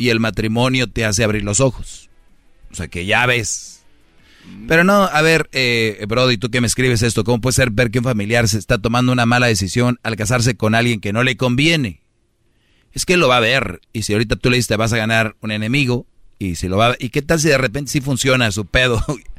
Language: Spanish